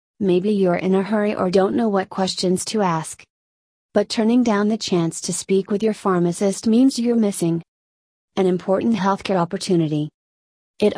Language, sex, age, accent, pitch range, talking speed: English, female, 30-49, American, 170-205 Hz, 165 wpm